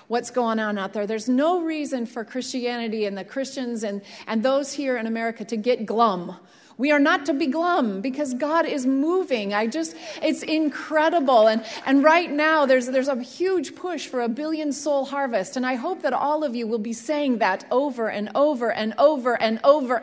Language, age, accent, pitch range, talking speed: English, 30-49, American, 225-310 Hz, 205 wpm